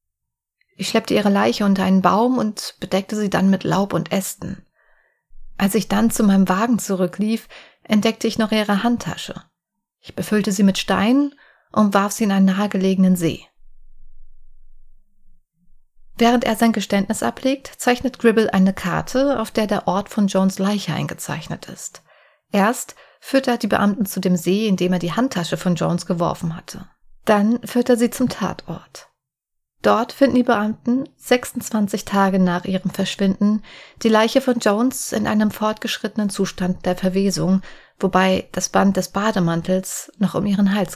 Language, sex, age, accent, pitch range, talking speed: German, female, 30-49, German, 185-230 Hz, 160 wpm